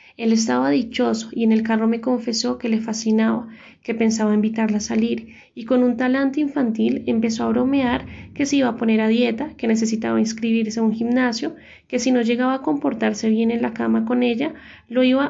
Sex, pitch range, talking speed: female, 220-250 Hz, 205 wpm